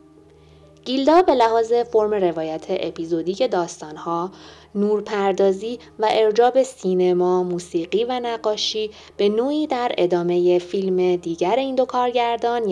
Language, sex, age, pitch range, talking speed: Persian, female, 20-39, 170-225 Hz, 115 wpm